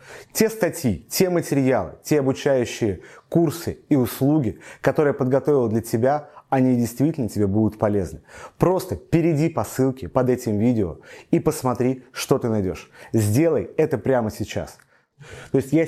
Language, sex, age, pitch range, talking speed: Russian, male, 30-49, 115-150 Hz, 145 wpm